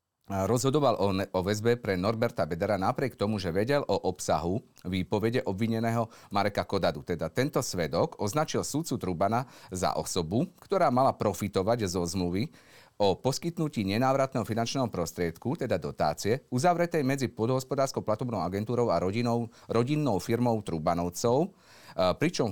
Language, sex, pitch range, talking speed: Slovak, male, 95-125 Hz, 125 wpm